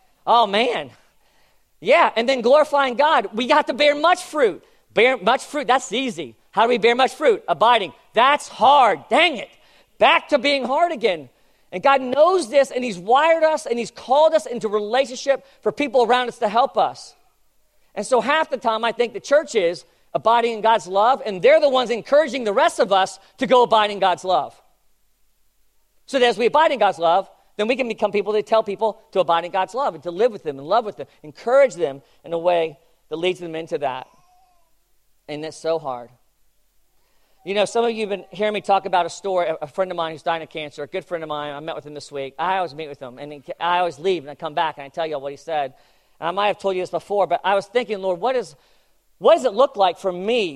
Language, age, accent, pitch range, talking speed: English, 40-59, American, 170-255 Hz, 240 wpm